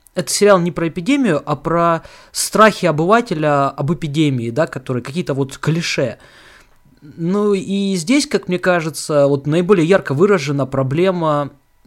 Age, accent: 20-39, native